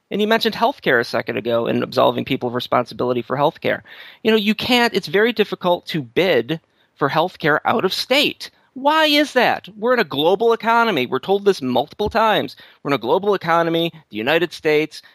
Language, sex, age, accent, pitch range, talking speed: English, male, 30-49, American, 160-235 Hz, 195 wpm